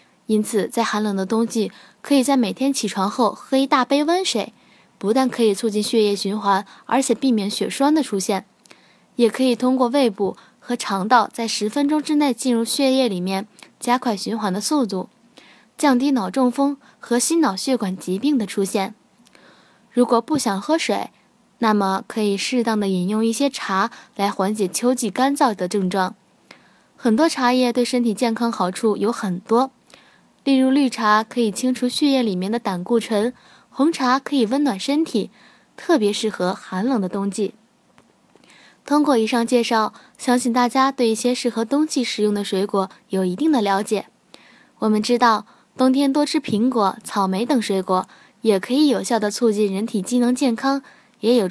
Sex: female